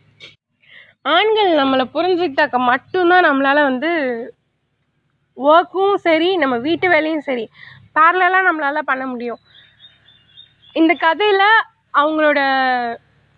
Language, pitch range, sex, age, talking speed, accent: Tamil, 250-355 Hz, female, 20-39, 85 wpm, native